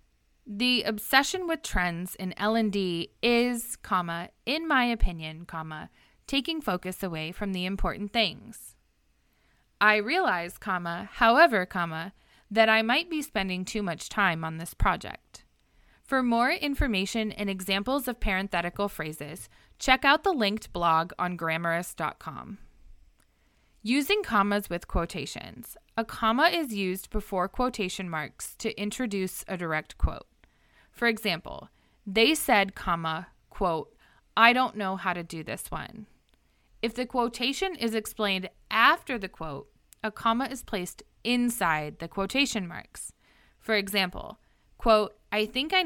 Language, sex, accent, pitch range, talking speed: English, female, American, 180-240 Hz, 135 wpm